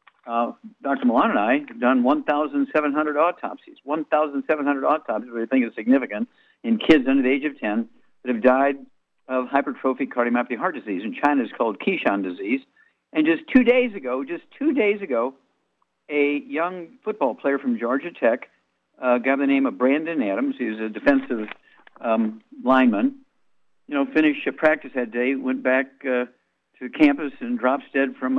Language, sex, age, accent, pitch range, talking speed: English, male, 60-79, American, 120-155 Hz, 170 wpm